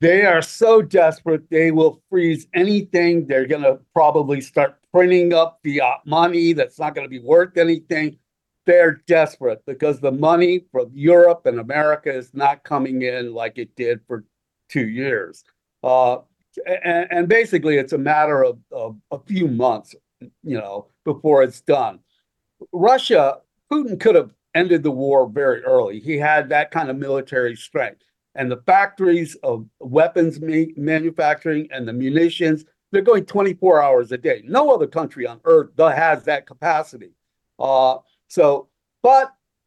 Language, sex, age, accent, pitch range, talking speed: English, male, 50-69, American, 140-180 Hz, 155 wpm